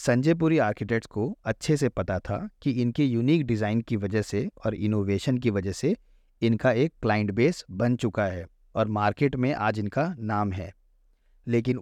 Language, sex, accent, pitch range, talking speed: Hindi, male, native, 105-130 Hz, 175 wpm